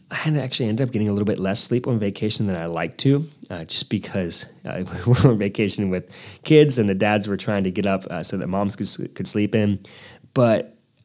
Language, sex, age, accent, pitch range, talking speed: English, male, 20-39, American, 100-130 Hz, 235 wpm